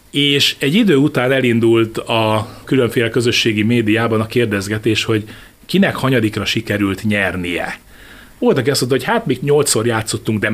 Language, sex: Hungarian, male